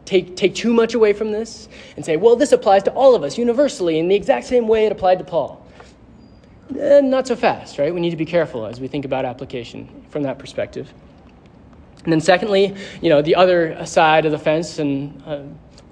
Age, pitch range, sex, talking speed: 20-39, 145-195 Hz, male, 215 wpm